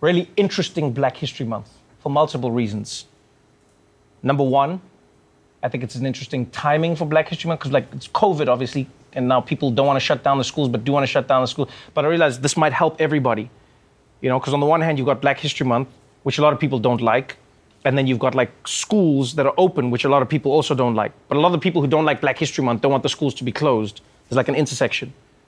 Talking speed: 250 wpm